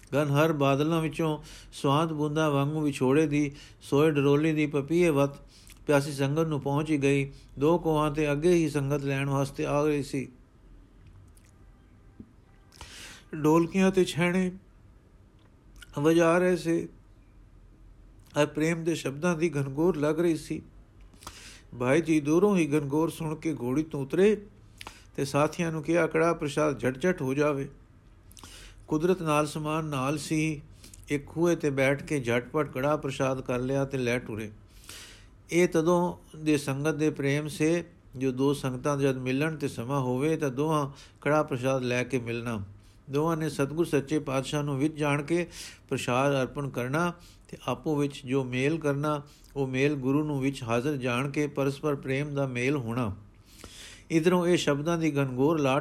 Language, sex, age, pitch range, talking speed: Punjabi, male, 50-69, 125-155 Hz, 155 wpm